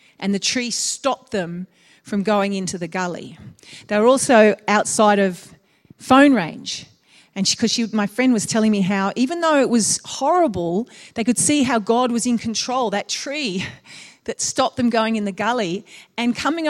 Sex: female